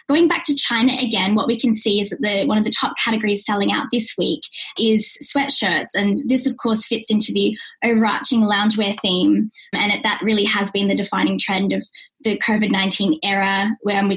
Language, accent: English, Australian